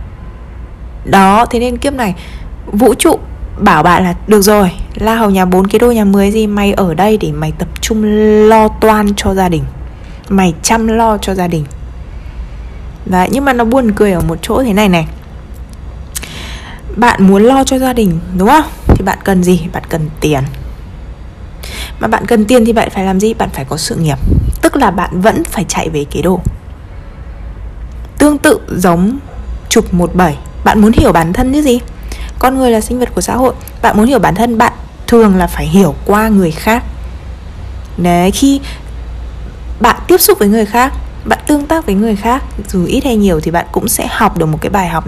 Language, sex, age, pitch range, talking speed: Vietnamese, female, 20-39, 155-225 Hz, 200 wpm